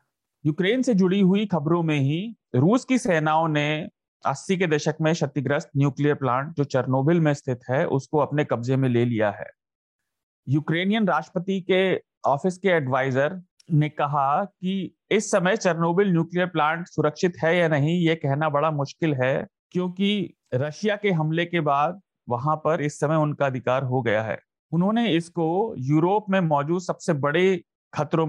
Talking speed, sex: 160 wpm, male